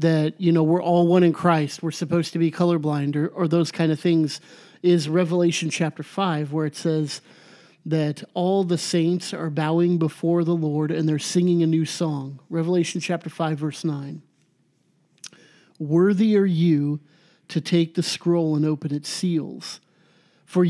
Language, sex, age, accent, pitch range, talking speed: English, male, 50-69, American, 155-185 Hz, 170 wpm